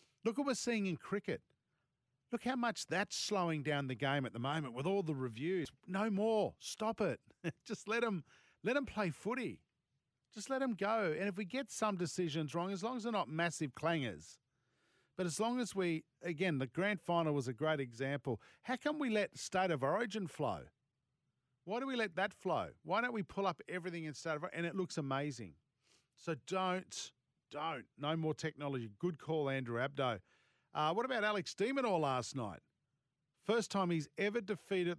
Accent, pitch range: Australian, 135-190 Hz